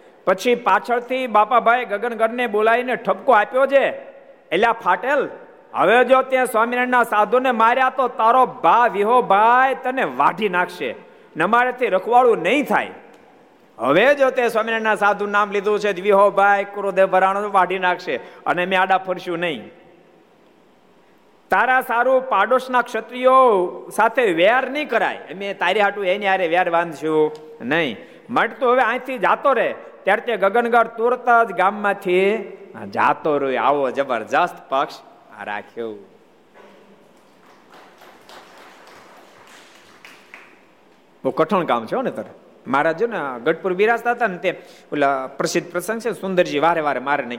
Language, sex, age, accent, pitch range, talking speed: Gujarati, male, 50-69, native, 185-245 Hz, 60 wpm